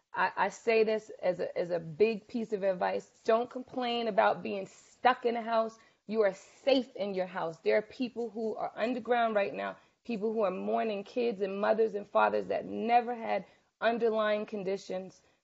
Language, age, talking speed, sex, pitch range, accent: English, 30-49, 180 wpm, female, 195-240 Hz, American